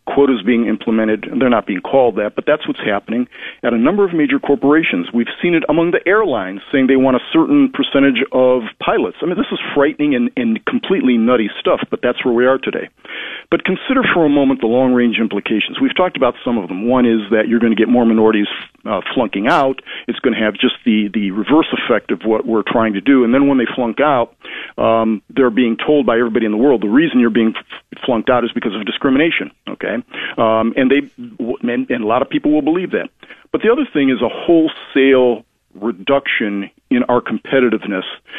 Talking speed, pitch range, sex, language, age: 215 wpm, 115-150 Hz, male, English, 40-59